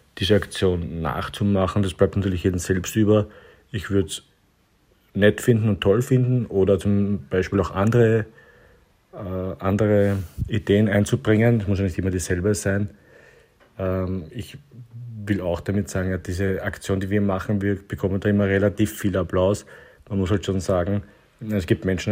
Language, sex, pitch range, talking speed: German, male, 95-105 Hz, 165 wpm